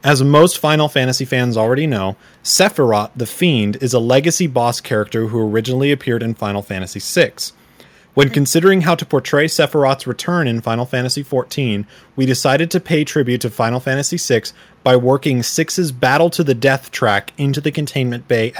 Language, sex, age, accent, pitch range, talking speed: English, male, 30-49, American, 115-145 Hz, 175 wpm